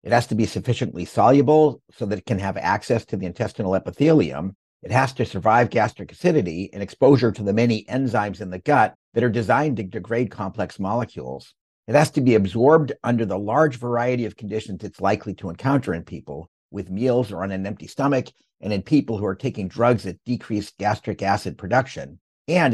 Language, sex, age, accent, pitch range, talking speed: English, male, 50-69, American, 95-130 Hz, 200 wpm